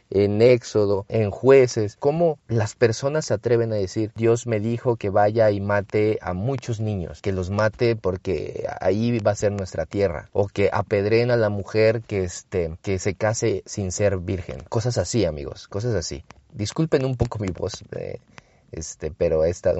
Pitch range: 95-125 Hz